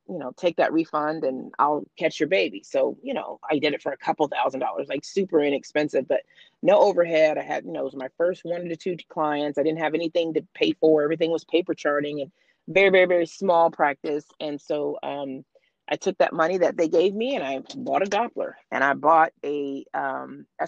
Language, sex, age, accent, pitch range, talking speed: English, female, 30-49, American, 145-175 Hz, 230 wpm